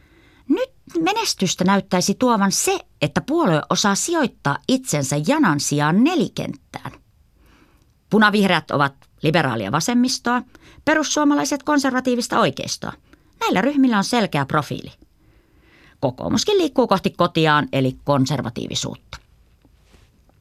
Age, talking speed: 30-49, 90 wpm